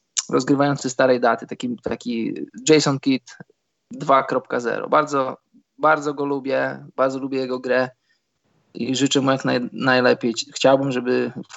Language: Polish